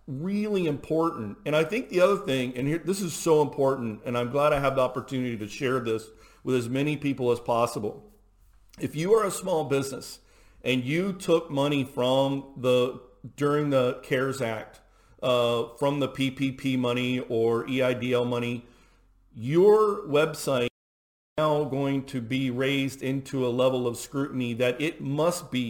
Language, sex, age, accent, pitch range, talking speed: English, male, 40-59, American, 125-155 Hz, 165 wpm